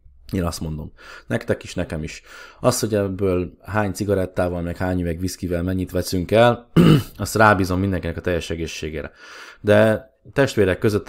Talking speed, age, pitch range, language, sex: 150 wpm, 20-39, 85-100 Hz, Hungarian, male